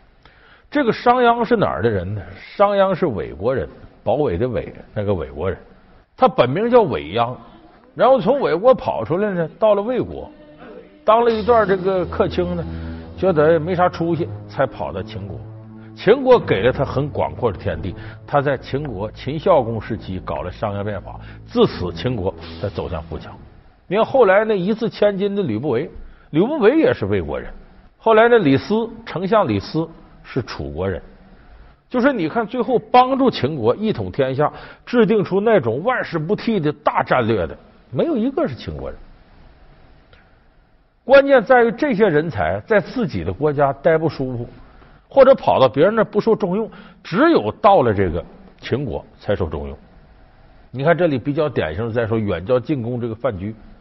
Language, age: Chinese, 50-69